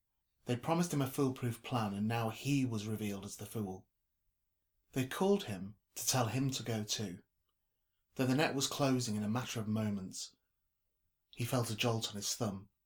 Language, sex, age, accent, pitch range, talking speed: English, male, 30-49, British, 100-120 Hz, 185 wpm